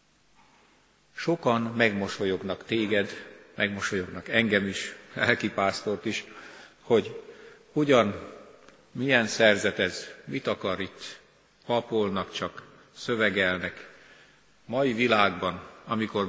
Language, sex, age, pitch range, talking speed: Hungarian, male, 50-69, 95-120 Hz, 75 wpm